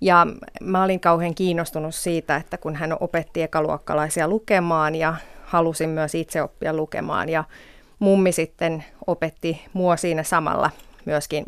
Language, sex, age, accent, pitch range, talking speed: Finnish, female, 30-49, native, 160-180 Hz, 130 wpm